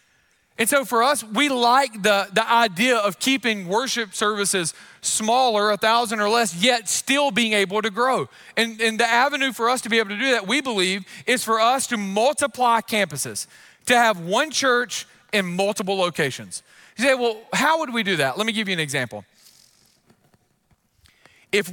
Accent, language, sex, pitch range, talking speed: American, English, male, 145-225 Hz, 180 wpm